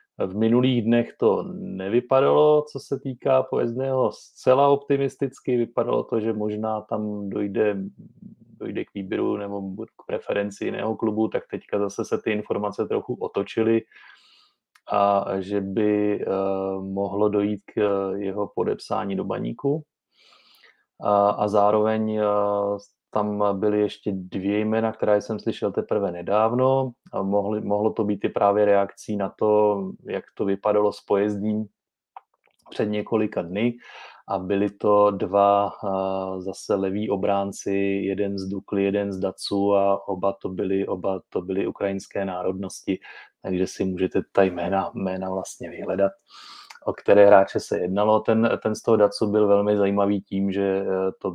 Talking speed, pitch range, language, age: 140 wpm, 100-110 Hz, Czech, 30-49